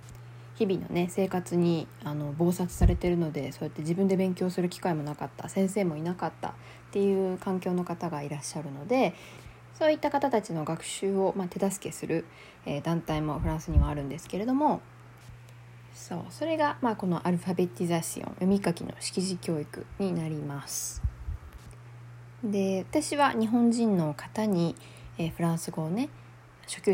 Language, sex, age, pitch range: Japanese, female, 20-39, 140-195 Hz